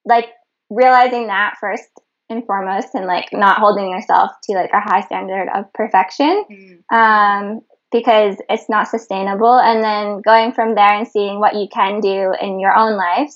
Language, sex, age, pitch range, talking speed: English, female, 10-29, 195-230 Hz, 170 wpm